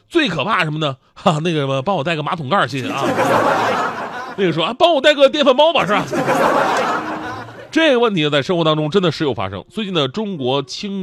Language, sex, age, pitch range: Chinese, male, 30-49, 130-195 Hz